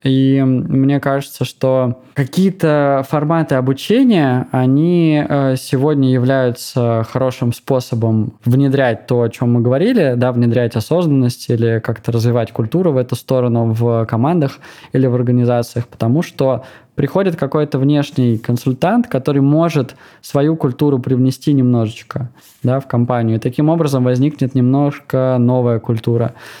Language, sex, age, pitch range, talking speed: Russian, male, 20-39, 125-145 Hz, 125 wpm